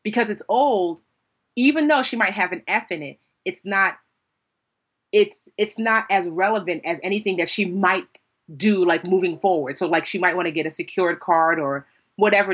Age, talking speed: 30-49, 190 wpm